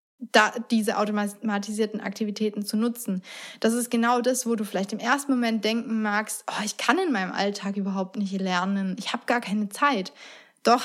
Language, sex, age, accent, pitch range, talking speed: German, female, 20-39, German, 205-245 Hz, 175 wpm